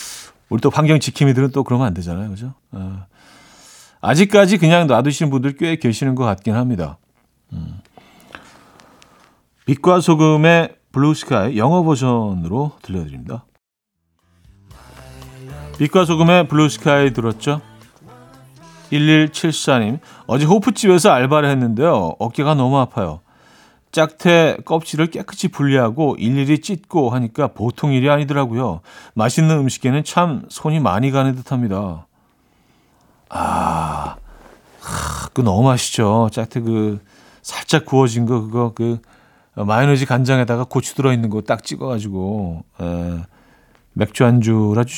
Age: 40-59